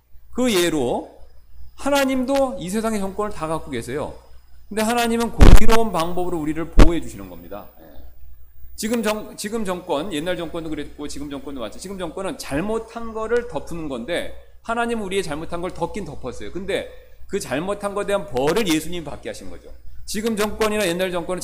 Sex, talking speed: male, 150 wpm